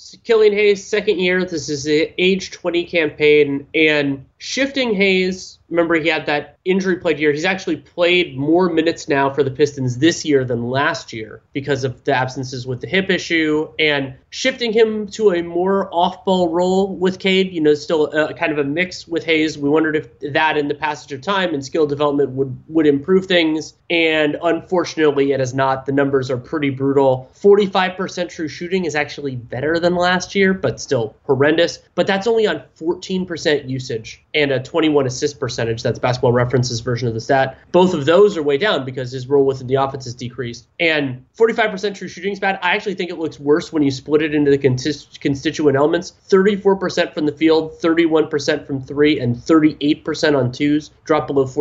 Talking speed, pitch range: 195 wpm, 140-180 Hz